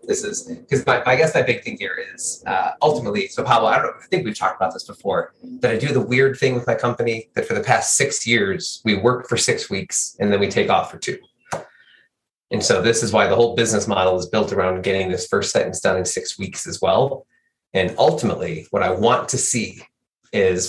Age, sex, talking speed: 30-49, male, 235 wpm